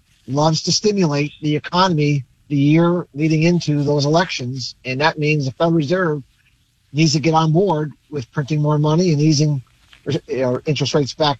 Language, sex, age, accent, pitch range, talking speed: English, male, 40-59, American, 135-170 Hz, 165 wpm